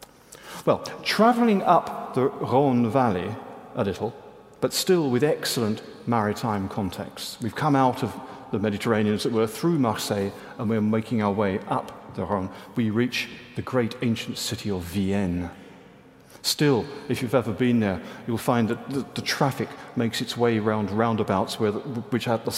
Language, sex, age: English, male, 50-69